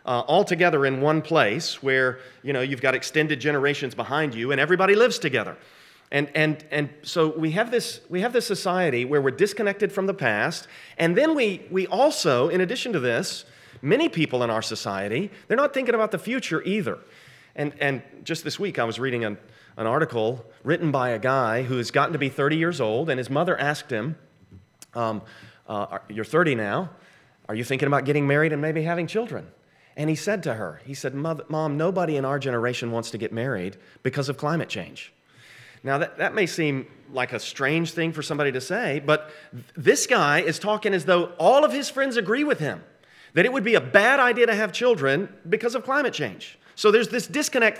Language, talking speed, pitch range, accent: English, 210 wpm, 135-205 Hz, American